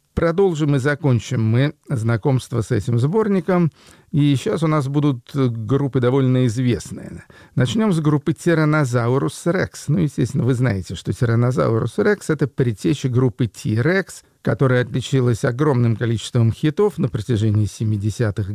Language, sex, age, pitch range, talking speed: Russian, male, 50-69, 115-145 Hz, 130 wpm